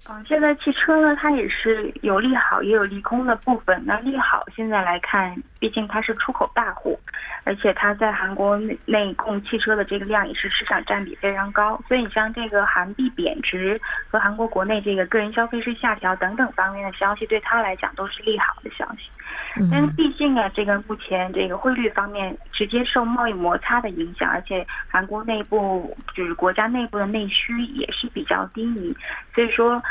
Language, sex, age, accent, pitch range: Korean, female, 20-39, Chinese, 195-235 Hz